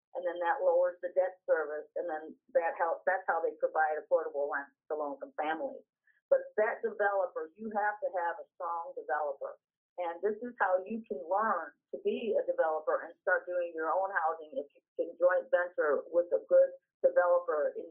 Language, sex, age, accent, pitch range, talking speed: English, female, 50-69, American, 170-270 Hz, 190 wpm